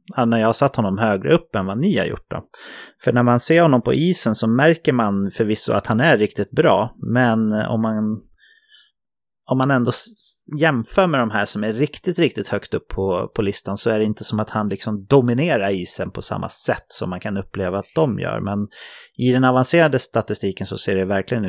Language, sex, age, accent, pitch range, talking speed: English, male, 30-49, Swedish, 100-145 Hz, 210 wpm